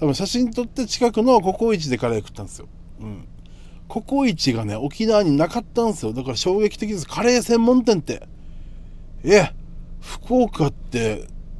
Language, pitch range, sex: Japanese, 125-210 Hz, male